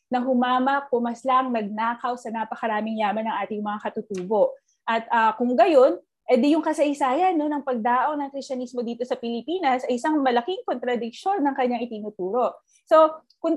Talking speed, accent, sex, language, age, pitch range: 155 wpm, native, female, Filipino, 20-39, 220-275 Hz